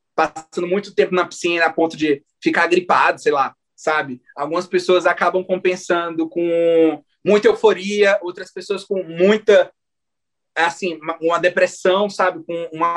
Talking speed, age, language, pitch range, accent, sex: 145 wpm, 20-39, Portuguese, 170-235 Hz, Brazilian, male